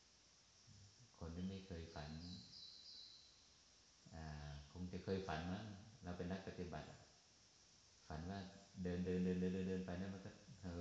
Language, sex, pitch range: Thai, male, 85-100 Hz